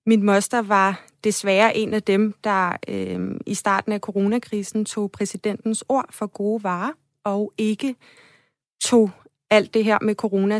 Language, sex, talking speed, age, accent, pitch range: Danish, female, 155 wpm, 30-49, native, 190-215 Hz